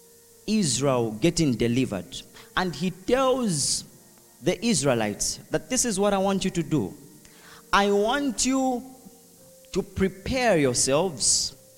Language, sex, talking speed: English, male, 115 wpm